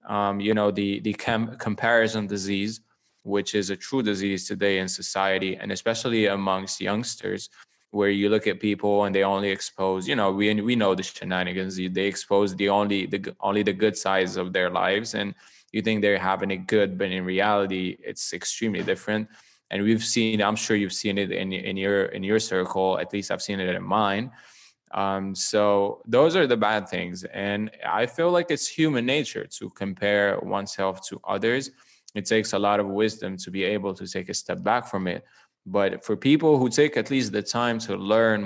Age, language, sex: 20-39, English, male